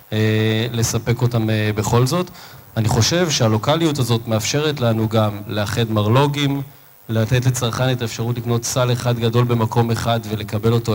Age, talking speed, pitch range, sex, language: 30-49, 135 wpm, 115-130 Hz, male, Hebrew